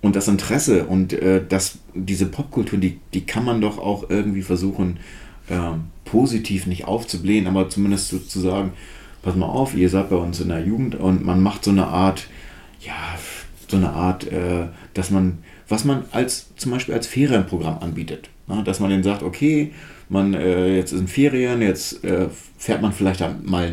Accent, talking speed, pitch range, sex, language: German, 185 wpm, 90-105 Hz, male, German